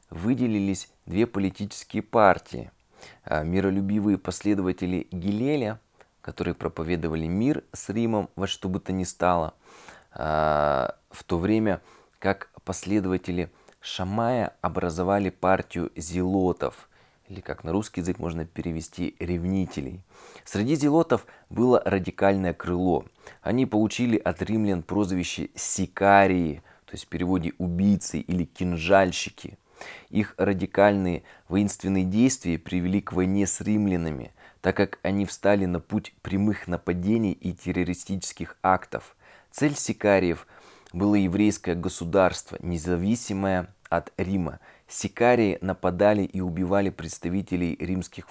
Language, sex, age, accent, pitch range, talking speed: Russian, male, 20-39, native, 90-100 Hz, 110 wpm